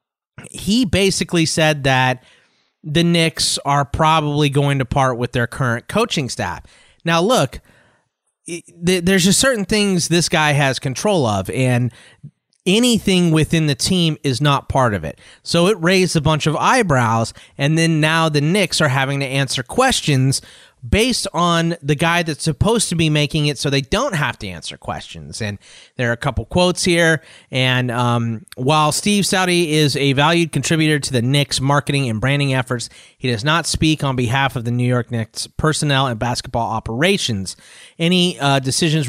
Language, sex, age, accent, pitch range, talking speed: English, male, 30-49, American, 120-165 Hz, 170 wpm